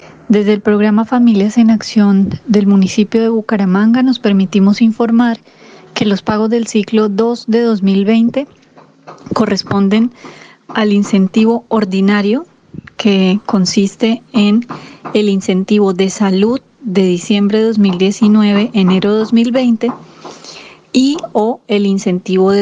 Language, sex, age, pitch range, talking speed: Spanish, female, 20-39, 195-225 Hz, 115 wpm